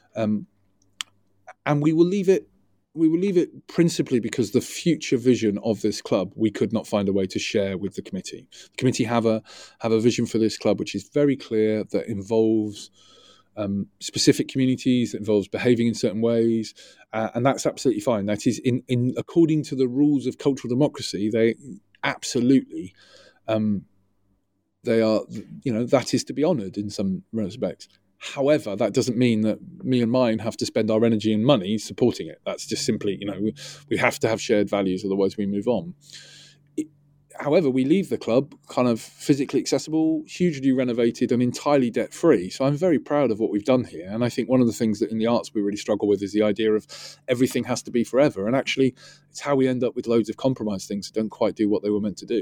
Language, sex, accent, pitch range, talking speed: English, male, British, 105-135 Hz, 215 wpm